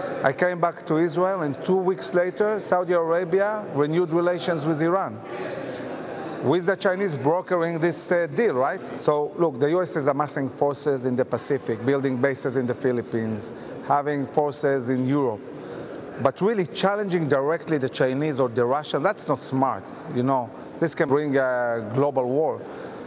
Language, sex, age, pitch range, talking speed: English, male, 40-59, 135-175 Hz, 160 wpm